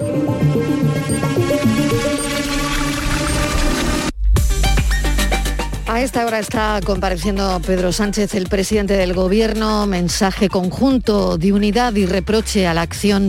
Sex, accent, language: female, Spanish, Spanish